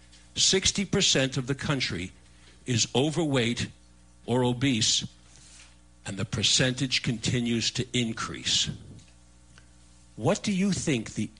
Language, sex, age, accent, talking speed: English, male, 60-79, American, 100 wpm